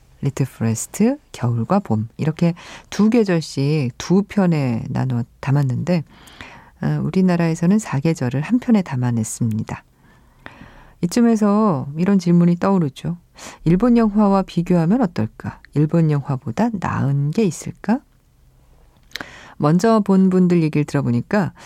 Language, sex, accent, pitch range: Korean, female, native, 130-195 Hz